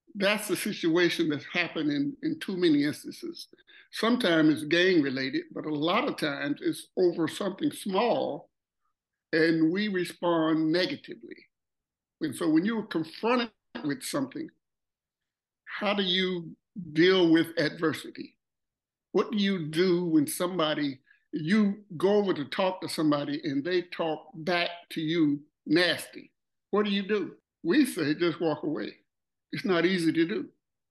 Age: 60-79